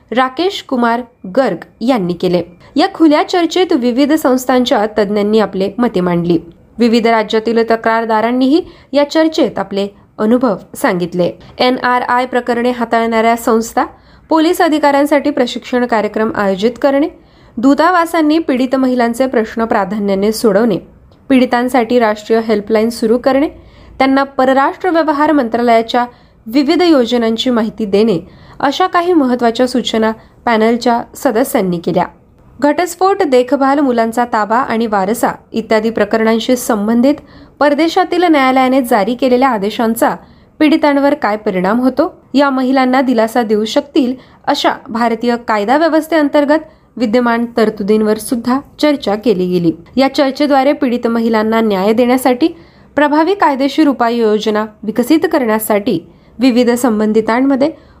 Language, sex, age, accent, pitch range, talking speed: Marathi, female, 20-39, native, 220-280 Hz, 110 wpm